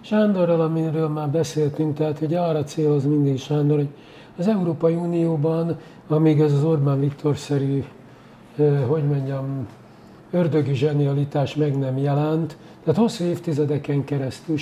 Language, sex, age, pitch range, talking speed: Hungarian, male, 60-79, 140-170 Hz, 125 wpm